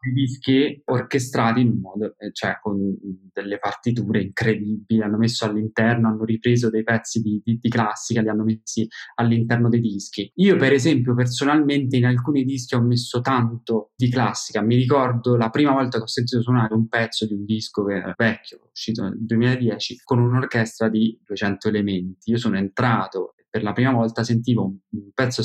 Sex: male